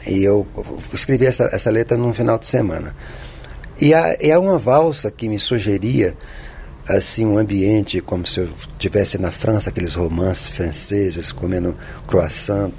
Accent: Brazilian